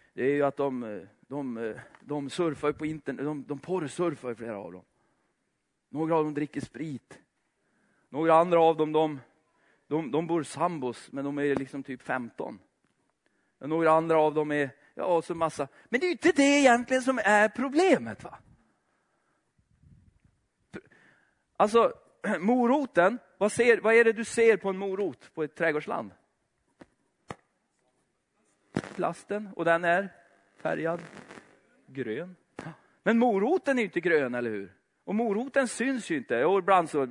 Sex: male